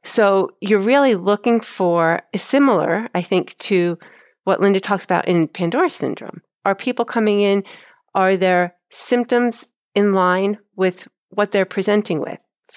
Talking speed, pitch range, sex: 150 wpm, 175-205 Hz, female